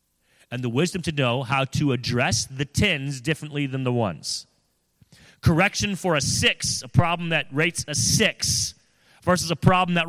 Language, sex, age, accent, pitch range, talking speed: English, male, 30-49, American, 125-175 Hz, 165 wpm